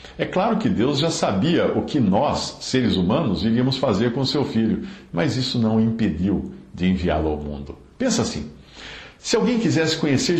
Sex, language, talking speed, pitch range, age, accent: male, Portuguese, 180 wpm, 85-120 Hz, 60-79, Brazilian